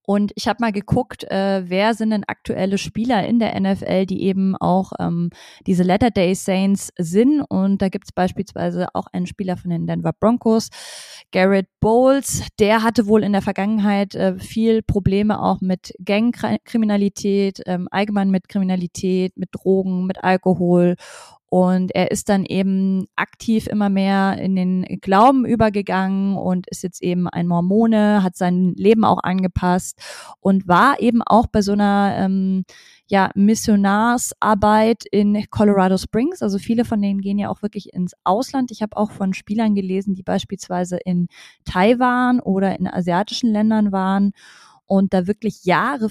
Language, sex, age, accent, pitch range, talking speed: German, female, 20-39, German, 185-215 Hz, 155 wpm